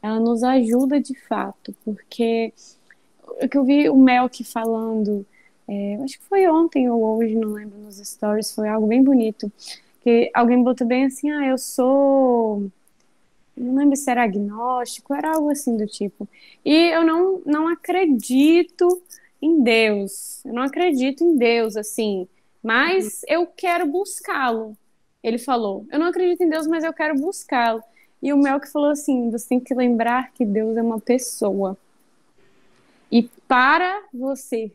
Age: 10-29